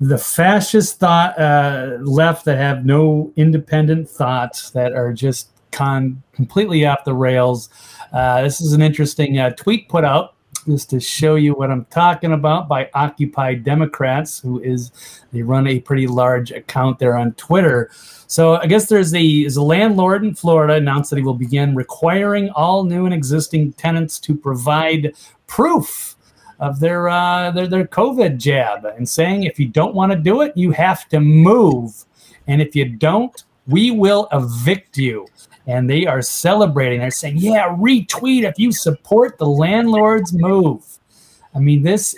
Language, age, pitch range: English, 40-59, 140-185 Hz